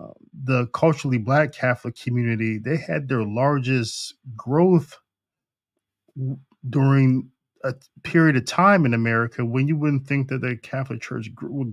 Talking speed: 140 wpm